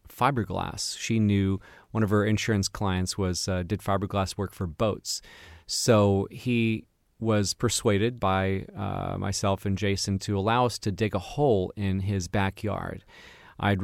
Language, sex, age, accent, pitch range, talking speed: English, male, 30-49, American, 95-110 Hz, 150 wpm